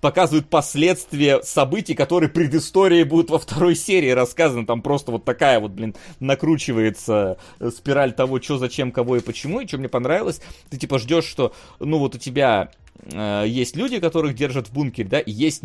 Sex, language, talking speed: male, Russian, 175 wpm